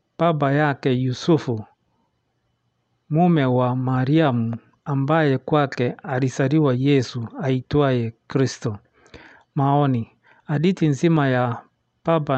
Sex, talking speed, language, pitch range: male, 90 wpm, English, 125-155 Hz